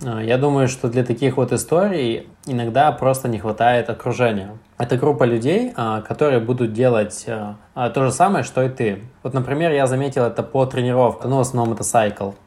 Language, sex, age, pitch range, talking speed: Russian, male, 20-39, 115-130 Hz, 170 wpm